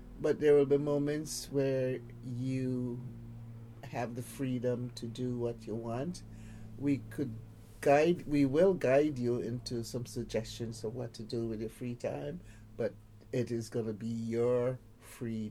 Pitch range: 110-135 Hz